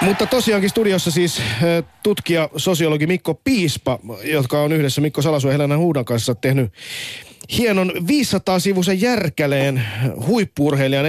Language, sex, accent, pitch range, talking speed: Finnish, male, native, 110-150 Hz, 115 wpm